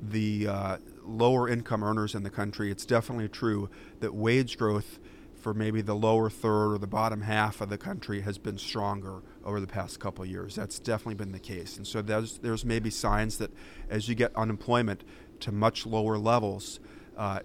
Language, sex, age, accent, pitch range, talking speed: English, male, 40-59, American, 105-115 Hz, 190 wpm